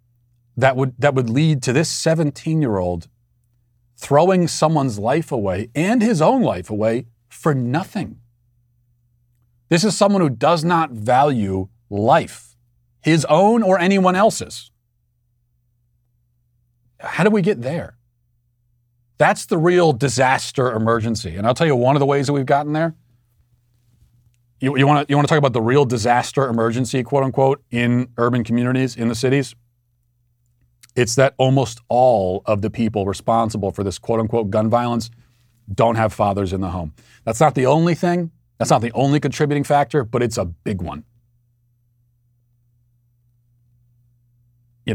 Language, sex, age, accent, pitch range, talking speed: English, male, 40-59, American, 120-140 Hz, 145 wpm